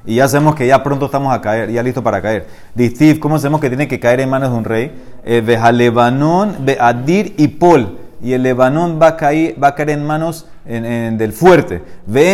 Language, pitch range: Spanish, 120-160 Hz